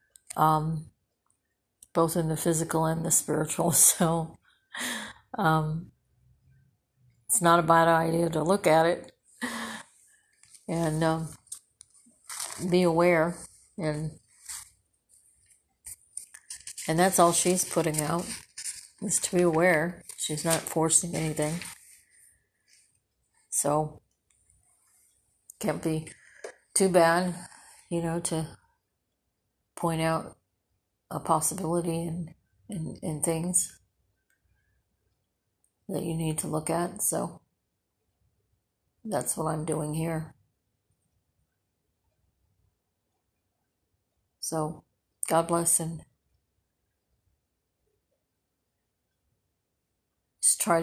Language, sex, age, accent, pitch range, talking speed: English, female, 60-79, American, 135-170 Hz, 85 wpm